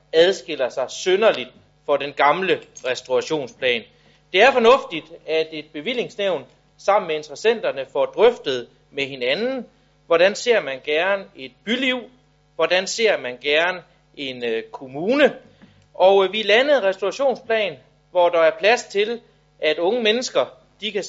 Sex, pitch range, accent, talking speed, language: male, 150-225 Hz, native, 140 wpm, Danish